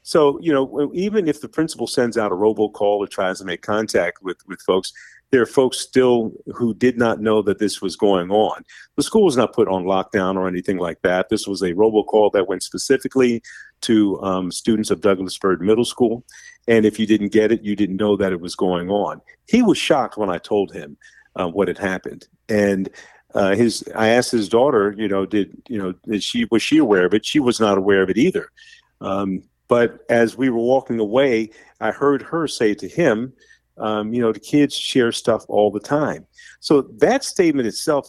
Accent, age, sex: American, 50-69, male